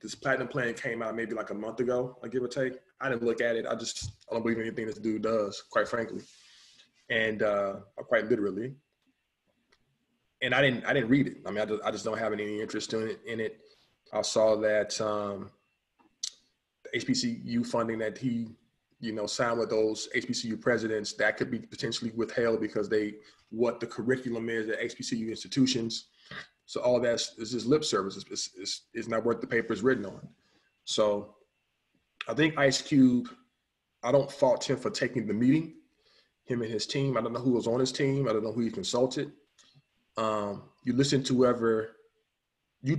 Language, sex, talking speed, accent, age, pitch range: English, male, 195 wpm, American, 20-39, 110-130 Hz